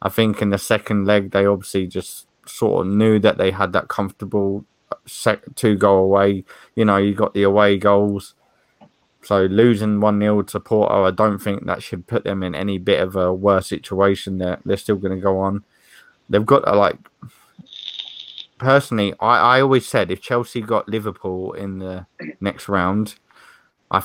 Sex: male